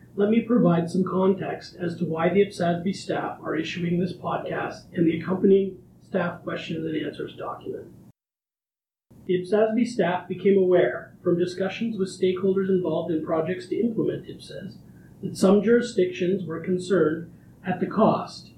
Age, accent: 40-59, American